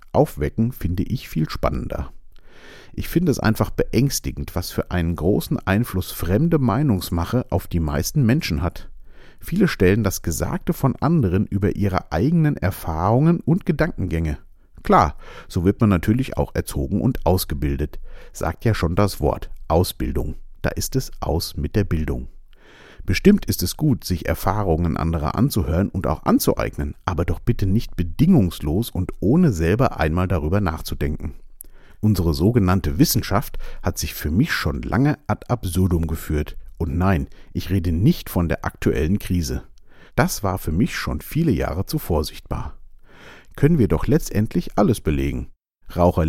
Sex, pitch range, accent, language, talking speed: male, 80-110 Hz, German, German, 150 wpm